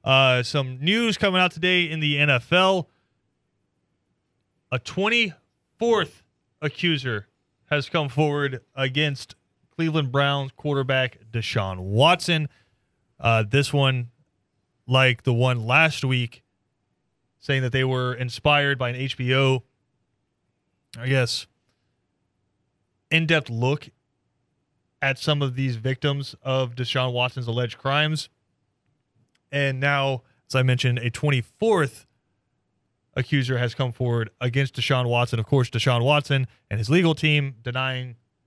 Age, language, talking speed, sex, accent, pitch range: 20-39, English, 115 wpm, male, American, 120-145 Hz